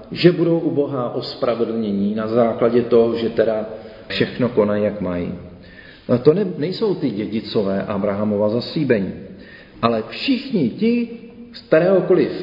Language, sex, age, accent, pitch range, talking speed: Czech, male, 40-59, native, 115-175 Hz, 115 wpm